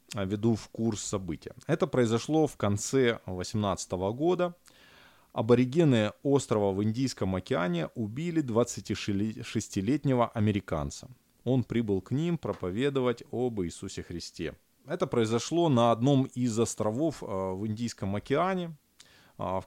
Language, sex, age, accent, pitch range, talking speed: Ukrainian, male, 20-39, native, 100-135 Hz, 110 wpm